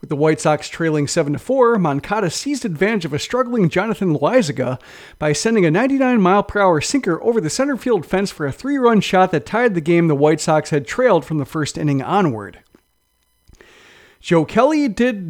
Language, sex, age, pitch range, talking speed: English, male, 40-59, 150-220 Hz, 195 wpm